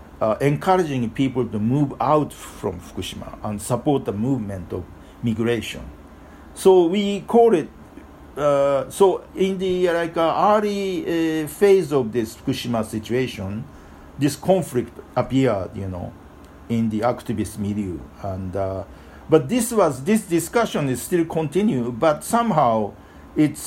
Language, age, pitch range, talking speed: English, 50-69, 100-150 Hz, 135 wpm